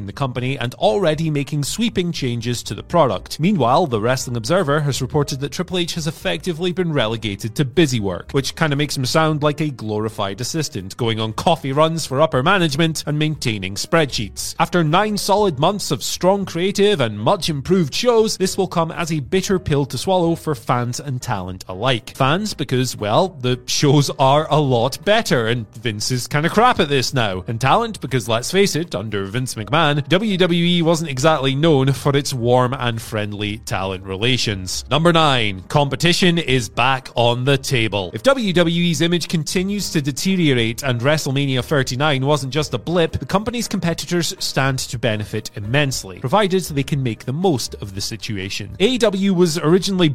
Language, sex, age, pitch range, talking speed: English, male, 30-49, 125-180 Hz, 175 wpm